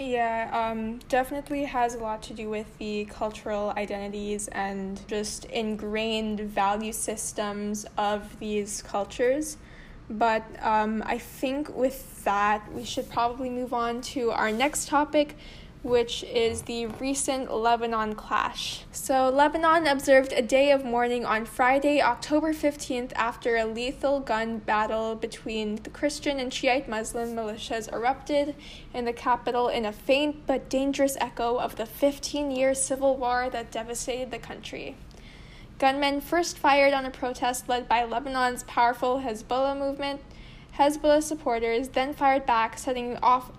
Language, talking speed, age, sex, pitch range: English, 140 wpm, 10-29, female, 225-275 Hz